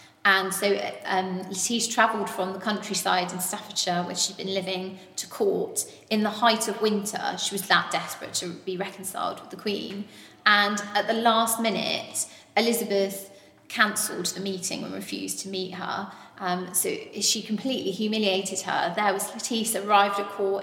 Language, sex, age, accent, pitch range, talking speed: English, female, 20-39, British, 190-220 Hz, 165 wpm